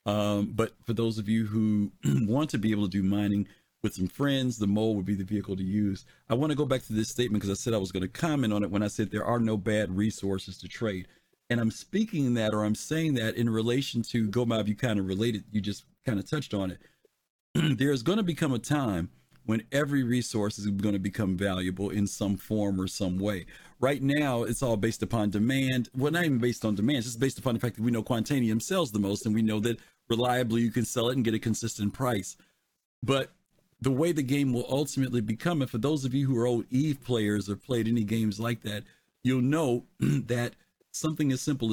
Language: English